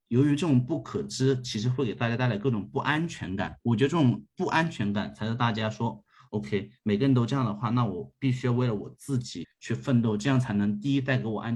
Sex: male